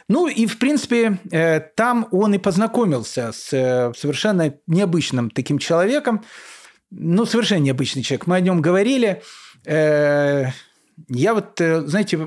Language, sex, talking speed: Russian, male, 115 wpm